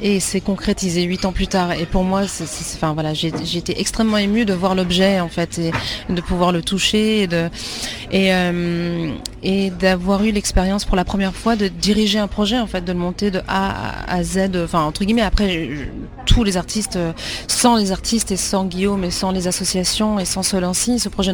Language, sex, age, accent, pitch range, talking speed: French, female, 30-49, French, 175-205 Hz, 190 wpm